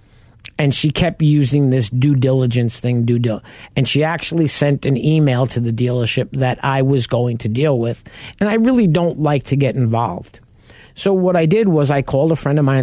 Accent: American